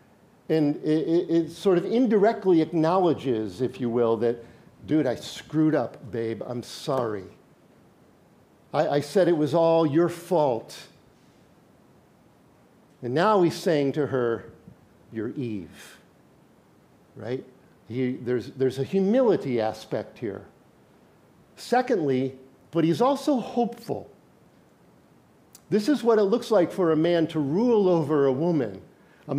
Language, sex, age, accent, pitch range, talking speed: English, male, 50-69, American, 150-225 Hz, 125 wpm